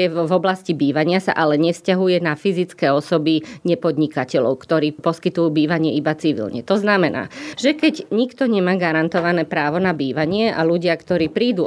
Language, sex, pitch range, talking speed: Slovak, female, 160-195 Hz, 150 wpm